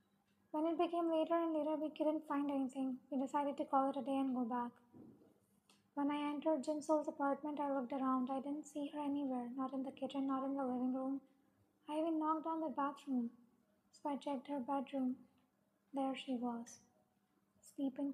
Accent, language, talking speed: Indian, English, 190 wpm